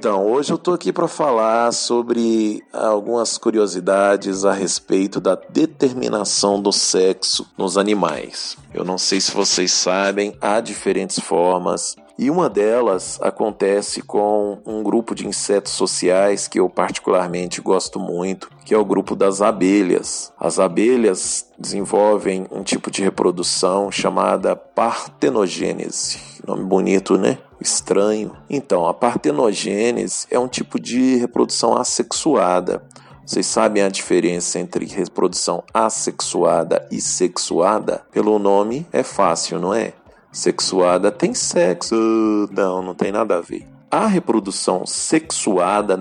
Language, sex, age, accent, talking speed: Portuguese, male, 40-59, Brazilian, 125 wpm